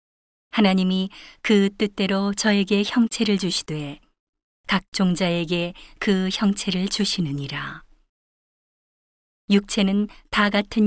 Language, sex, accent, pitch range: Korean, female, native, 170-205 Hz